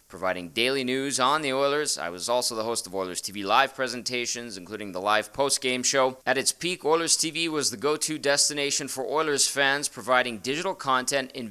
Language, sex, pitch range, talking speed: English, male, 120-145 Hz, 195 wpm